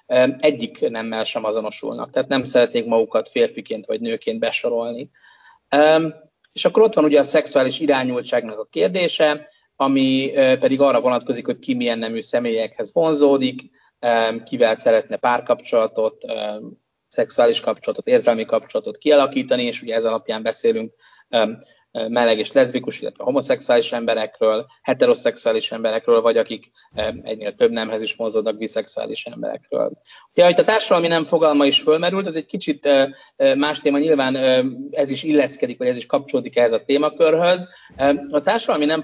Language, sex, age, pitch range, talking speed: Hungarian, male, 30-49, 120-175 Hz, 135 wpm